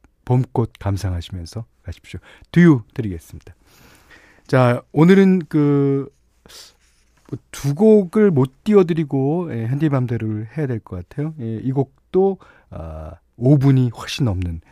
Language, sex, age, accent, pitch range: Korean, male, 40-59, native, 100-160 Hz